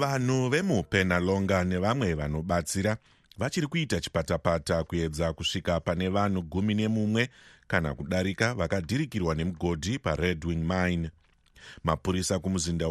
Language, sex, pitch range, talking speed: English, male, 85-105 Hz, 120 wpm